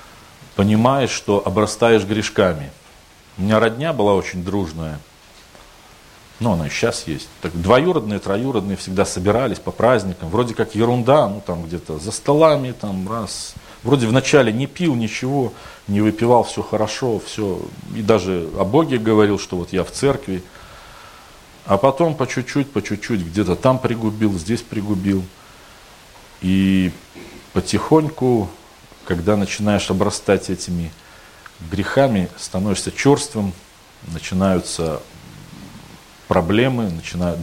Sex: male